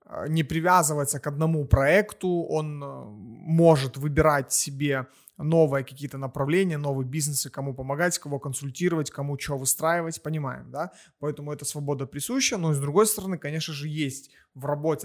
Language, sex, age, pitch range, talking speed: Russian, male, 20-39, 140-160 Hz, 145 wpm